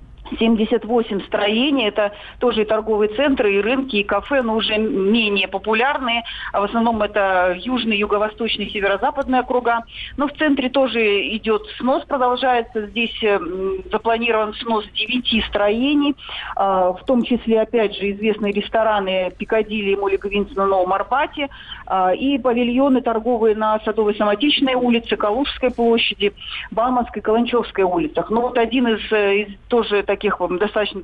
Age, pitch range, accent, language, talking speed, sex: 40-59, 200-235 Hz, native, Russian, 130 wpm, female